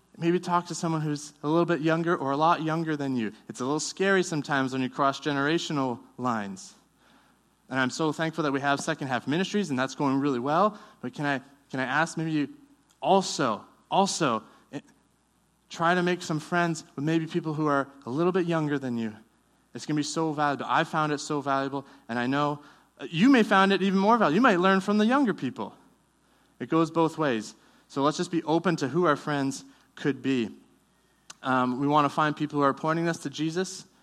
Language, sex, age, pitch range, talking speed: English, male, 20-39, 135-170 Hz, 215 wpm